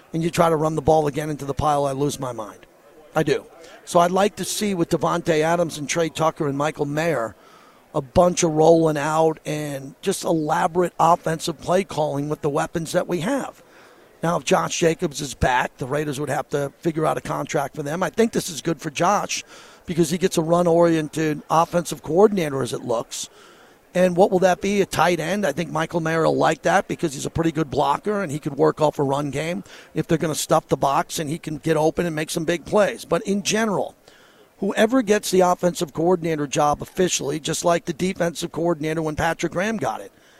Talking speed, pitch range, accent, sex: 220 wpm, 155-180 Hz, American, male